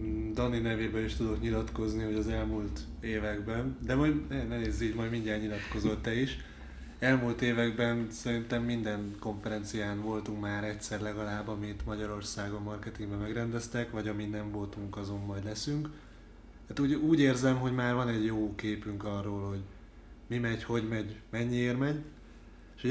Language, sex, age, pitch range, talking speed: Hungarian, male, 20-39, 105-120 Hz, 150 wpm